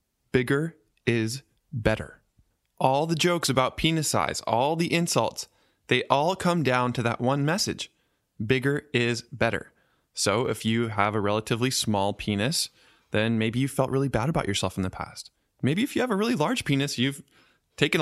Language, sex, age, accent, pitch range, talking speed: English, male, 20-39, American, 115-160 Hz, 175 wpm